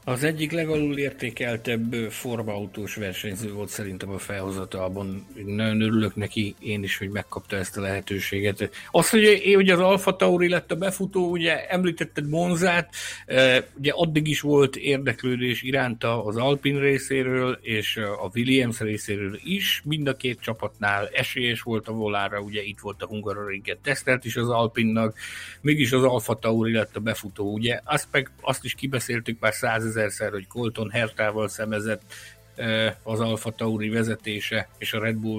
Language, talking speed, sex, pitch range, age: Hungarian, 150 wpm, male, 105-130 Hz, 60-79